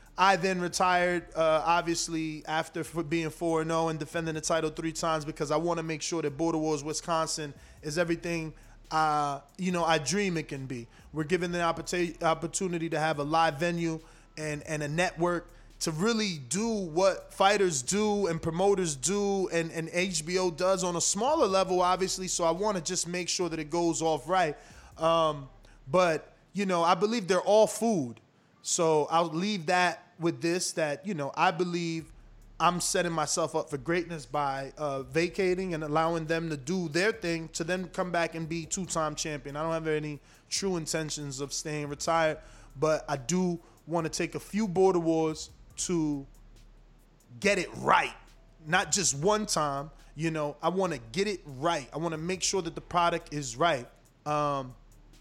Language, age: English, 20-39